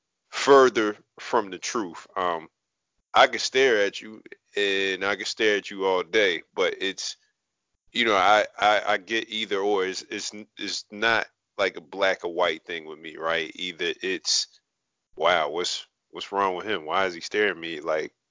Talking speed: 185 wpm